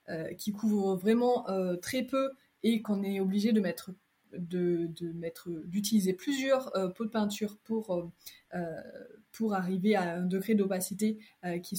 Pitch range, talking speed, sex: 190-225 Hz, 120 wpm, female